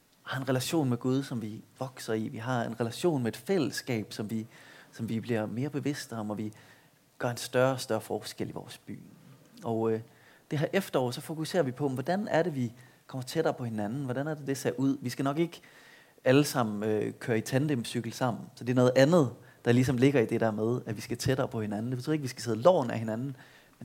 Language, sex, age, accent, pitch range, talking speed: Danish, male, 30-49, native, 115-145 Hz, 245 wpm